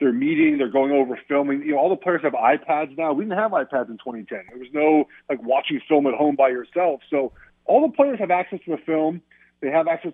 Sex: male